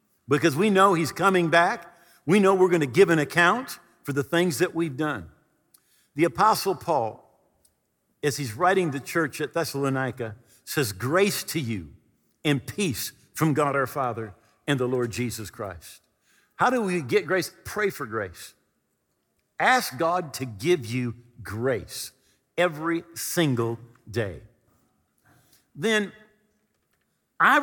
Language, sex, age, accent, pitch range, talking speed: English, male, 50-69, American, 130-205 Hz, 140 wpm